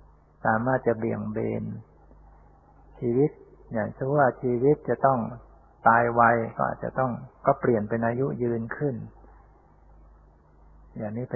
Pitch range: 80-130 Hz